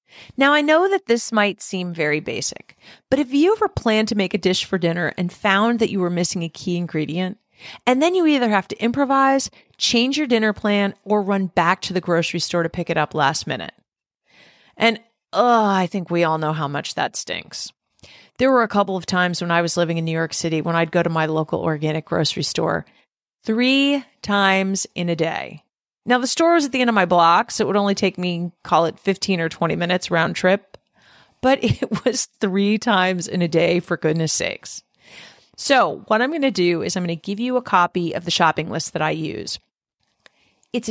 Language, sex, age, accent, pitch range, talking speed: English, female, 40-59, American, 170-230 Hz, 220 wpm